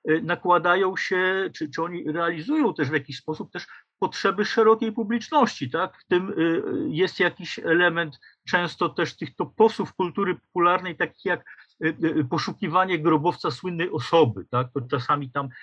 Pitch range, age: 125-160 Hz, 50-69